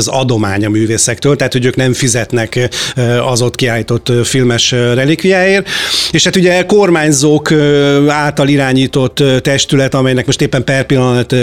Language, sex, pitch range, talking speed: Hungarian, male, 125-145 Hz, 135 wpm